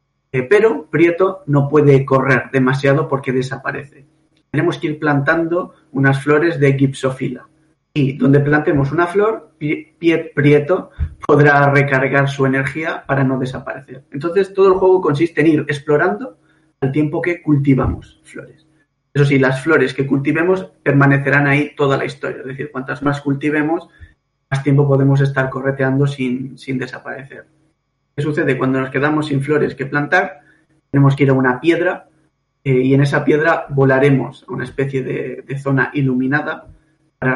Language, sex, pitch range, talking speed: Spanish, male, 135-155 Hz, 150 wpm